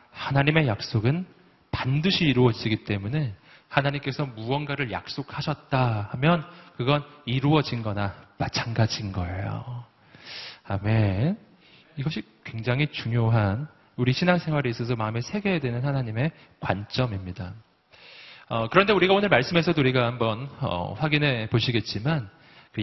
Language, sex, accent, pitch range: Korean, male, native, 120-160 Hz